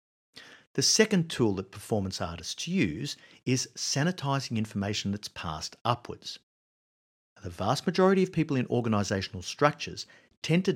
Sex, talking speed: male, 130 wpm